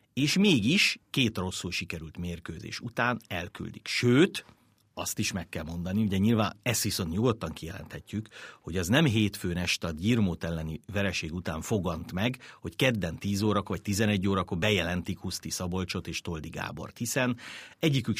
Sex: male